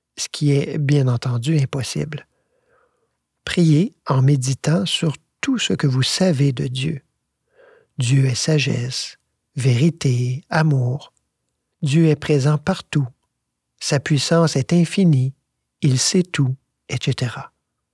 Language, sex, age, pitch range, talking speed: French, male, 50-69, 130-165 Hz, 115 wpm